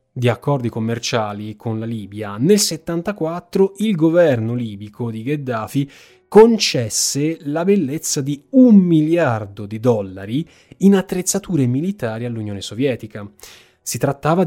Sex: male